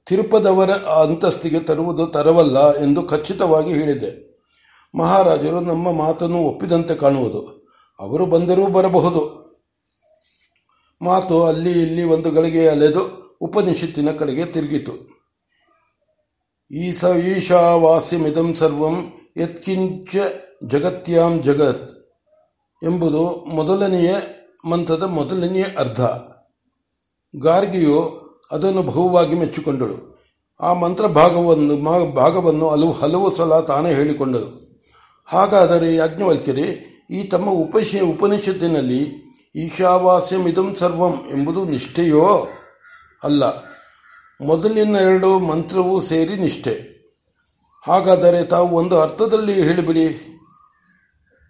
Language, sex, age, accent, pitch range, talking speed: Kannada, male, 60-79, native, 160-185 Hz, 80 wpm